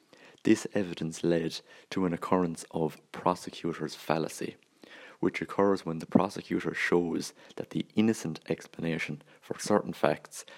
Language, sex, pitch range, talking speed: English, male, 80-95 Hz, 125 wpm